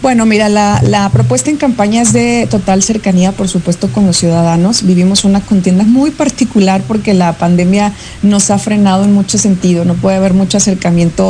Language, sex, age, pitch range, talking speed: Spanish, female, 30-49, 180-210 Hz, 185 wpm